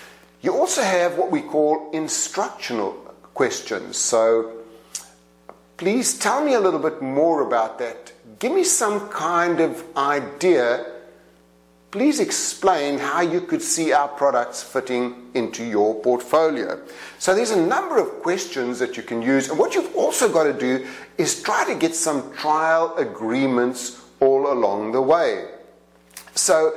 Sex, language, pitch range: male, English, 110-150 Hz